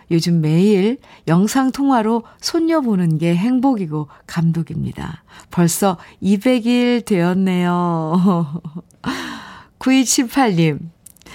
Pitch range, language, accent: 170-240 Hz, Korean, native